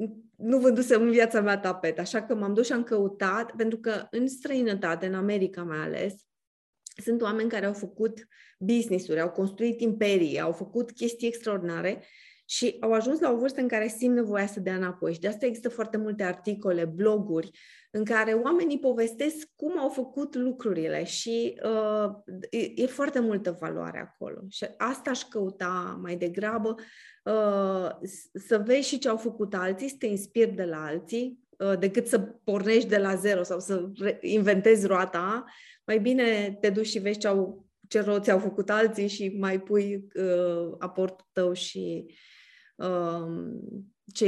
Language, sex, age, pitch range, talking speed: Romanian, female, 20-39, 185-230 Hz, 160 wpm